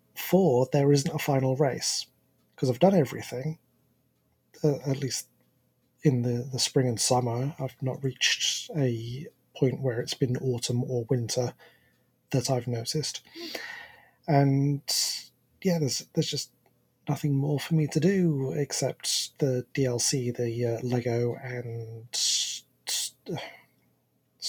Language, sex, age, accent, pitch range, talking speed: English, male, 30-49, British, 125-145 Hz, 125 wpm